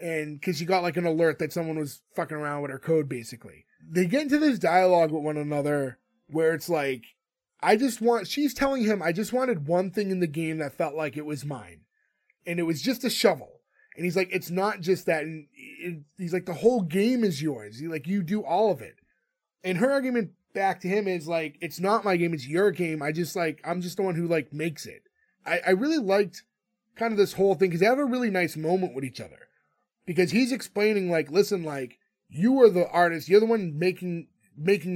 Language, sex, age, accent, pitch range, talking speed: English, male, 20-39, American, 160-200 Hz, 230 wpm